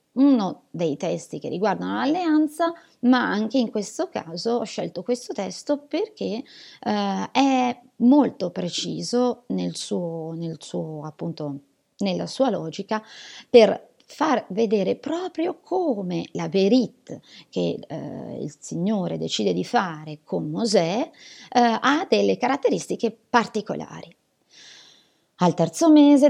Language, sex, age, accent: Italian, female, 30-49, native